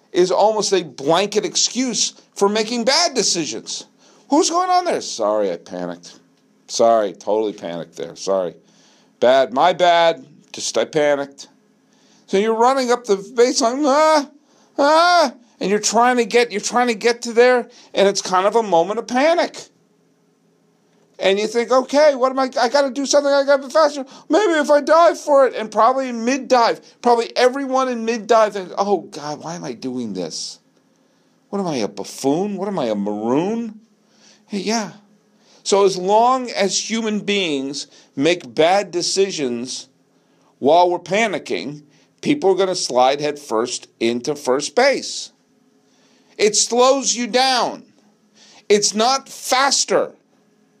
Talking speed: 150 wpm